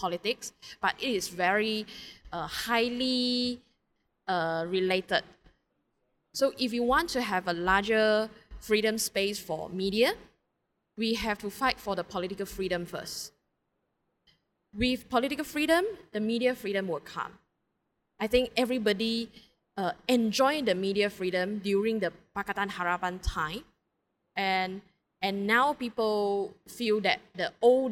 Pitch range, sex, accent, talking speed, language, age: 185-240 Hz, female, Malaysian, 125 wpm, English, 20-39